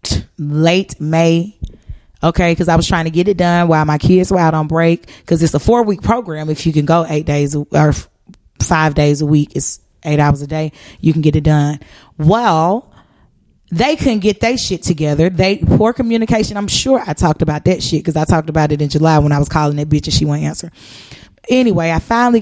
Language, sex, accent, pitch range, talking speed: English, female, American, 155-190 Hz, 215 wpm